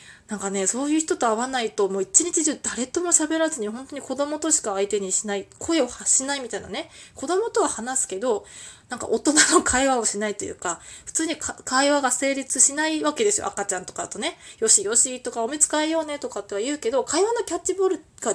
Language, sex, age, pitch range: Japanese, female, 20-39, 205-310 Hz